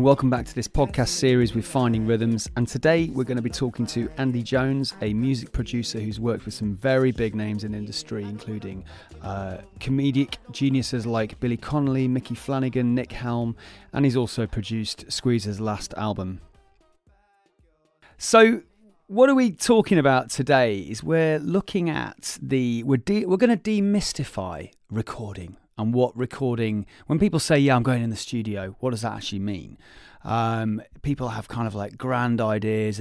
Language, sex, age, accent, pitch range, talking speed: English, male, 30-49, British, 110-145 Hz, 165 wpm